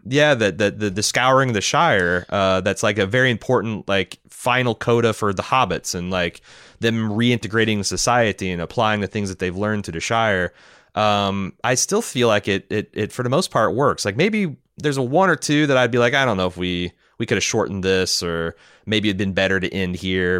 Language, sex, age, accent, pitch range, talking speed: English, male, 30-49, American, 95-120 Hz, 230 wpm